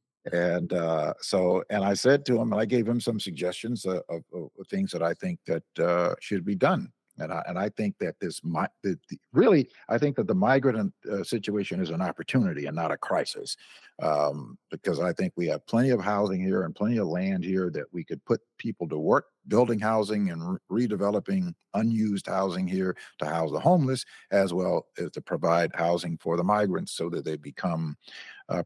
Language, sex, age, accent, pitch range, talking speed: English, male, 50-69, American, 85-120 Hz, 205 wpm